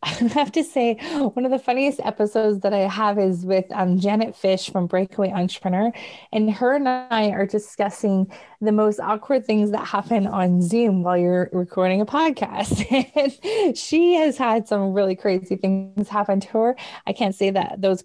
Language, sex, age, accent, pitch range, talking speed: English, female, 20-39, American, 195-230 Hz, 180 wpm